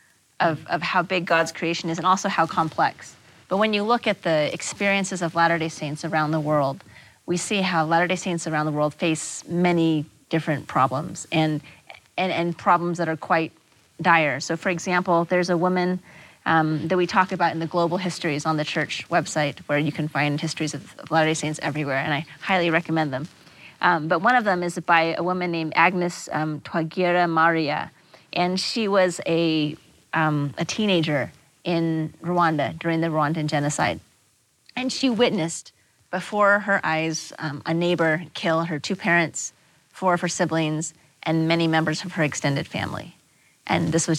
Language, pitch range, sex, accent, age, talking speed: English, 150-175 Hz, female, American, 30-49, 180 wpm